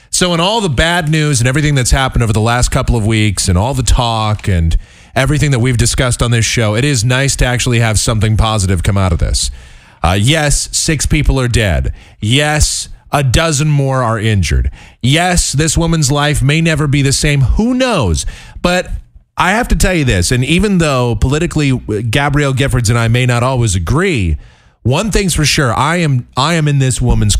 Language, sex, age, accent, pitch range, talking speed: English, male, 30-49, American, 100-145 Hz, 200 wpm